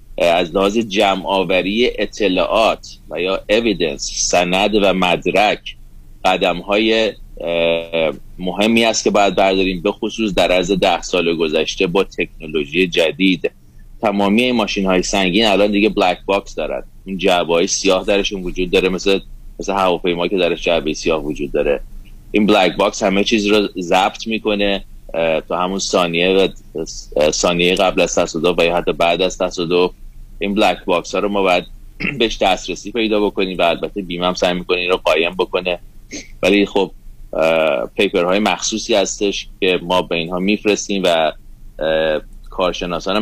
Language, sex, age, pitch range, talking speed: Persian, male, 30-49, 85-100 Hz, 150 wpm